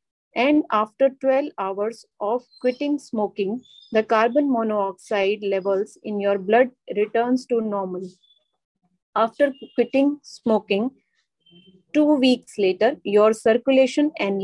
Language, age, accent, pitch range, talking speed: English, 30-49, Indian, 200-255 Hz, 110 wpm